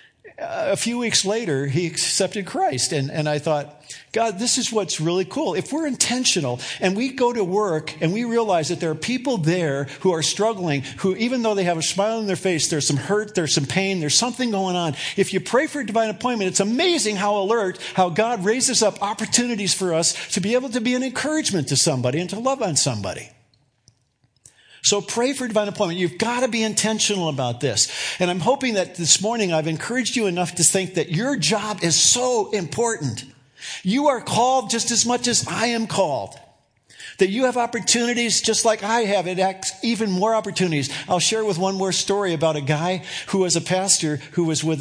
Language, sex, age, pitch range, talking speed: English, male, 50-69, 155-220 Hz, 210 wpm